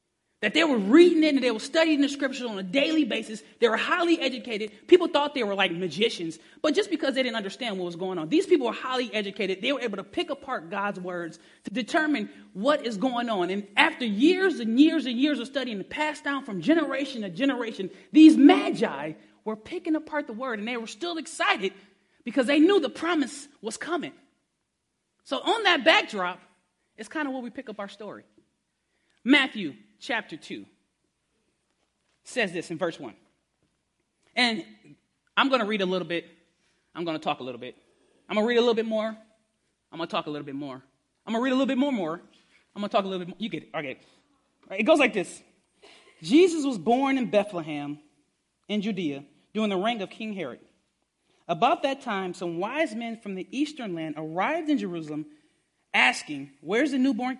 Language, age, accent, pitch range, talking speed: English, 30-49, American, 190-285 Hz, 205 wpm